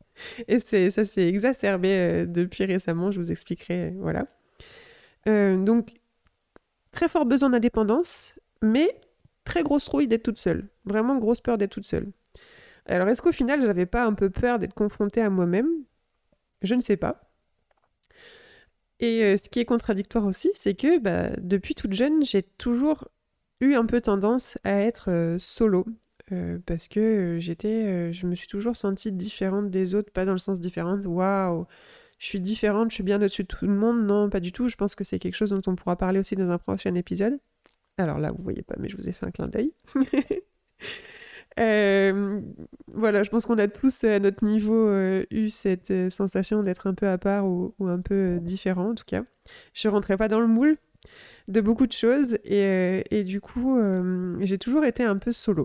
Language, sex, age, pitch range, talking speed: French, female, 20-39, 195-240 Hz, 200 wpm